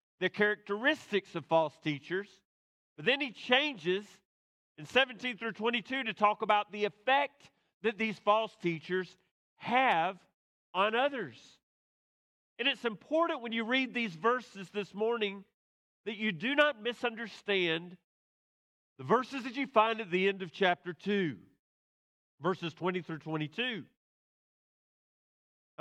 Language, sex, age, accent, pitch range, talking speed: English, male, 40-59, American, 185-235 Hz, 130 wpm